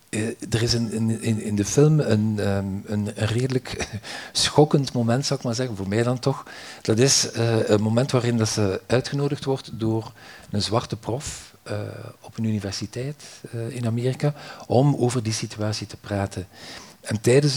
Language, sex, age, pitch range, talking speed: Dutch, male, 50-69, 110-130 Hz, 170 wpm